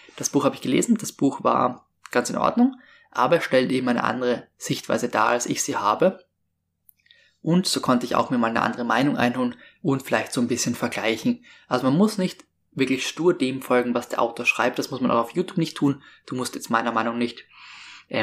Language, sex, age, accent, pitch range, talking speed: German, male, 20-39, German, 120-140 Hz, 215 wpm